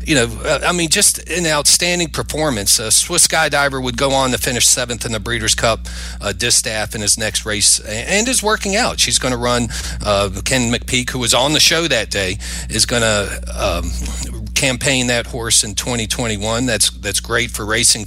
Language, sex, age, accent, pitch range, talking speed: English, male, 40-59, American, 95-130 Hz, 190 wpm